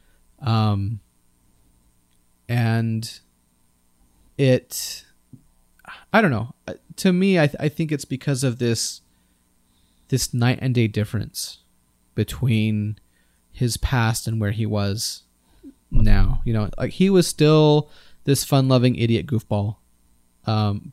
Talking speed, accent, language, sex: 120 wpm, American, English, male